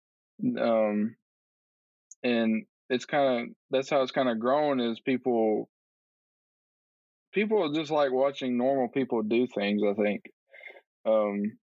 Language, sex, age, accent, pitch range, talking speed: English, male, 20-39, American, 110-130 Hz, 125 wpm